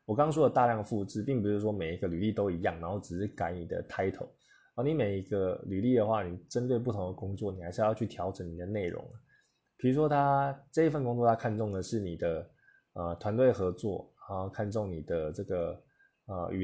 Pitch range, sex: 95-115 Hz, male